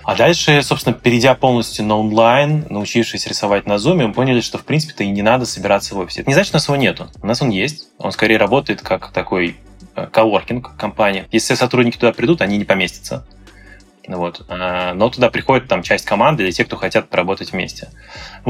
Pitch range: 95-120 Hz